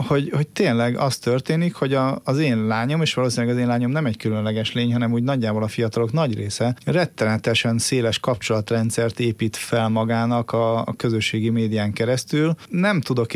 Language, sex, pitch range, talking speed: Hungarian, male, 115-135 Hz, 175 wpm